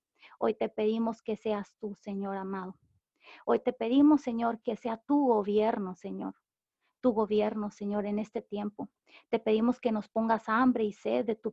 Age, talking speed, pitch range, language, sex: 30-49, 170 wpm, 210-230 Hz, Spanish, female